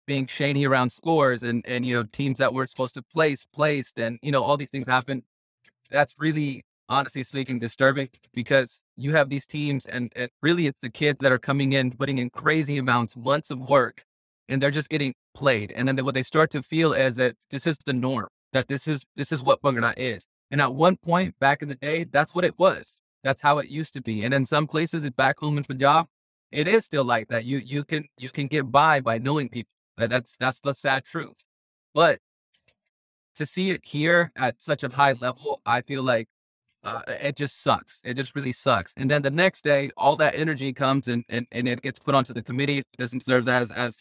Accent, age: American, 20-39